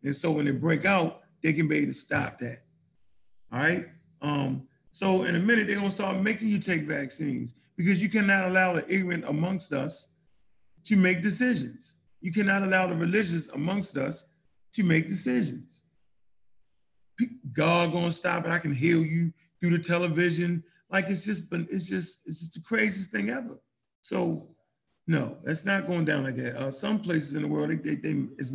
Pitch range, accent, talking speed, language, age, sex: 140-185 Hz, American, 175 wpm, English, 40-59, male